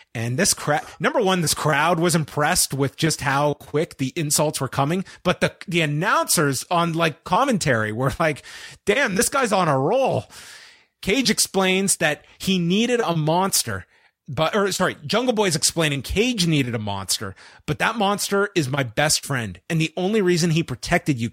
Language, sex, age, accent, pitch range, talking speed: English, male, 30-49, American, 140-185 Hz, 175 wpm